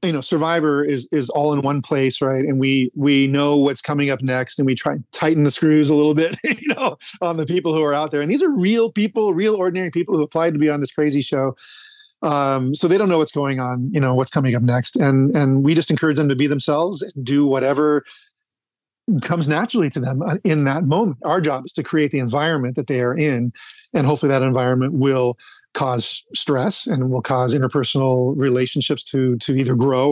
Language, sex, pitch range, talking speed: English, male, 135-165 Hz, 225 wpm